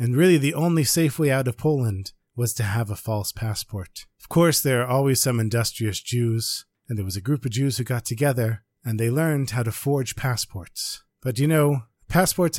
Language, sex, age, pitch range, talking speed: English, male, 40-59, 110-145 Hz, 210 wpm